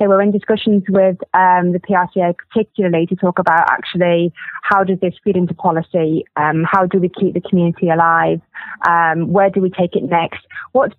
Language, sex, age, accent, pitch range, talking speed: English, female, 20-39, British, 175-200 Hz, 185 wpm